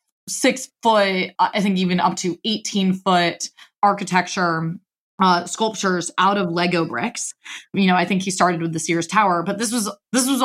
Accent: American